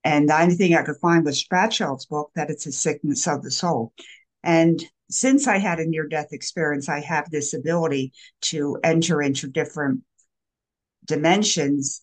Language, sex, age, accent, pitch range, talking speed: English, female, 50-69, American, 140-180 Hz, 165 wpm